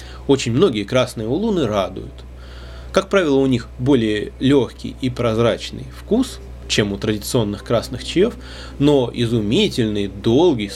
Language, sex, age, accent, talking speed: Russian, male, 20-39, native, 125 wpm